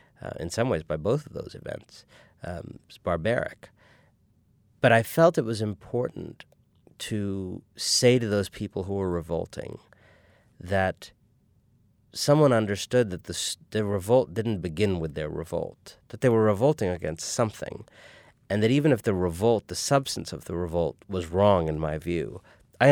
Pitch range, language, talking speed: 95-115 Hz, English, 160 wpm